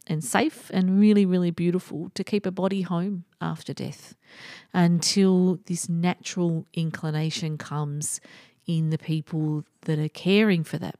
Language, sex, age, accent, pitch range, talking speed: English, female, 40-59, Australian, 165-215 Hz, 140 wpm